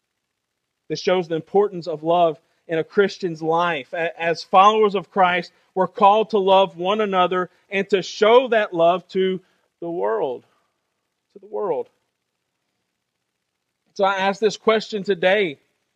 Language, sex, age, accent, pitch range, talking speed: English, male, 40-59, American, 140-195 Hz, 140 wpm